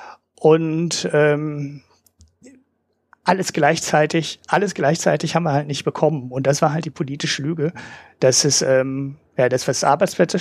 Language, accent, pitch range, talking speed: German, German, 130-155 Hz, 145 wpm